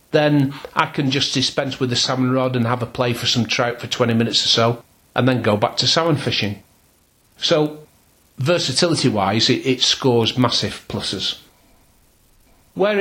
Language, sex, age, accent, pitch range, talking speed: English, male, 40-59, British, 115-145 Hz, 165 wpm